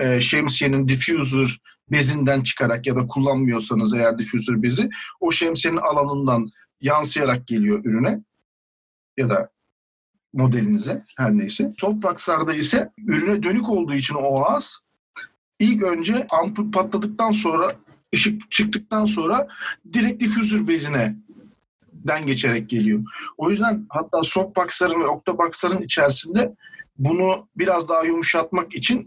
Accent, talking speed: Turkish, 115 wpm